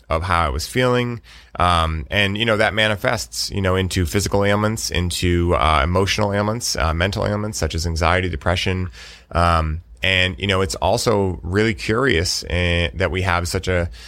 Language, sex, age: English, male, 30-49